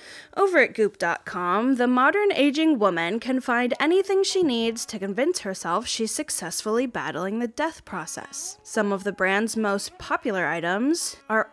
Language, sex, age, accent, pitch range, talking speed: English, female, 10-29, American, 200-310 Hz, 150 wpm